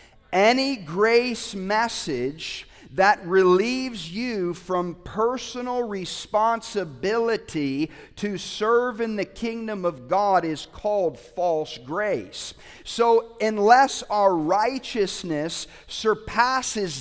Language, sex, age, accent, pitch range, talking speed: English, male, 40-59, American, 140-200 Hz, 90 wpm